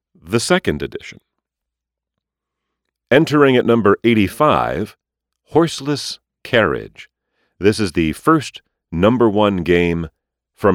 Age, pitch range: 40-59, 65-105 Hz